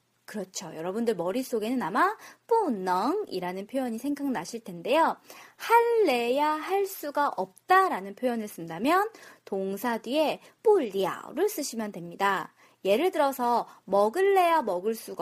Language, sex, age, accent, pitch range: Korean, female, 20-39, native, 230-380 Hz